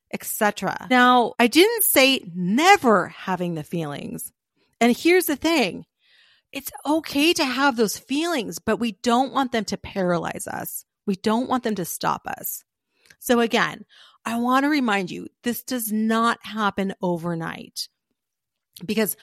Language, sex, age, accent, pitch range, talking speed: English, female, 40-59, American, 195-255 Hz, 145 wpm